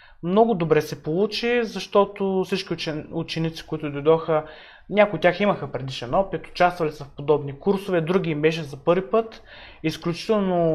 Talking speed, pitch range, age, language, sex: 150 wpm, 150-195 Hz, 20-39, Bulgarian, male